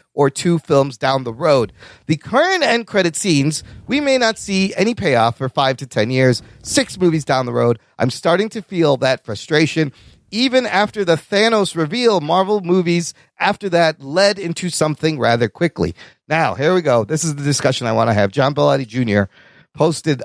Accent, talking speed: American, 185 wpm